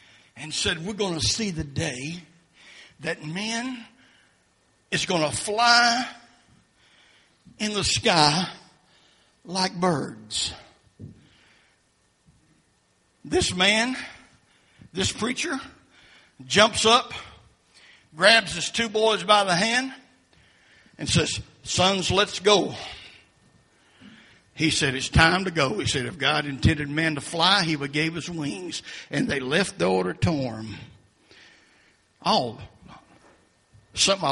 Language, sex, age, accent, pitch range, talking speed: English, male, 60-79, American, 145-200 Hz, 110 wpm